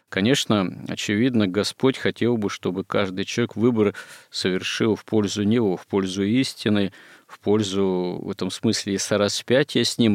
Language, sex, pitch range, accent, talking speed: Russian, male, 95-115 Hz, native, 150 wpm